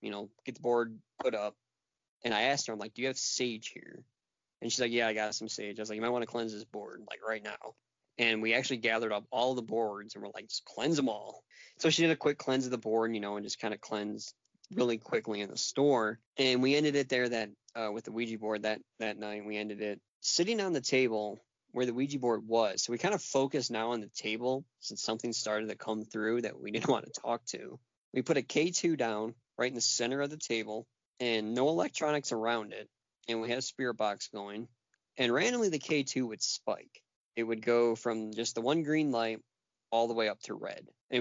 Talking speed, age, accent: 250 wpm, 20-39, American